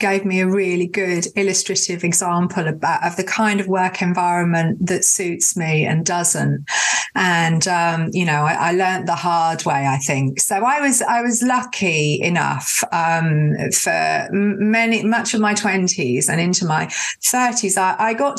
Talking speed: 175 wpm